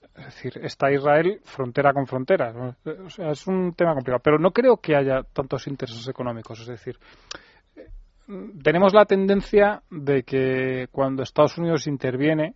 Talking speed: 155 wpm